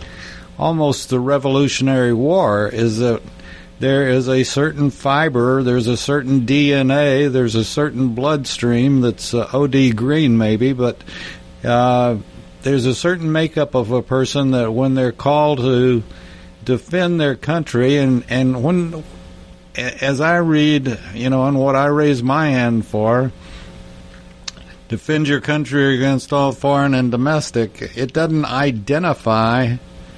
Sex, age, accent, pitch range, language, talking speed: male, 60-79, American, 115-140 Hz, English, 135 wpm